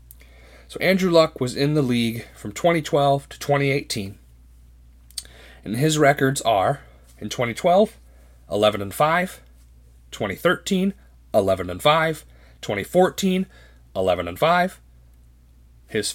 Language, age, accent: English, 30-49, American